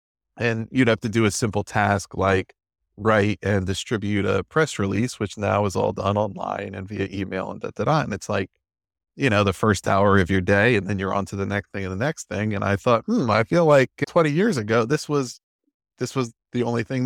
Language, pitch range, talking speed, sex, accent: English, 100-125 Hz, 240 wpm, male, American